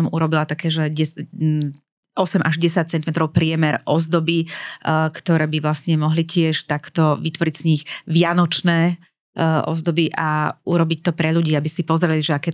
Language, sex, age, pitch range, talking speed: Slovak, female, 30-49, 155-170 Hz, 145 wpm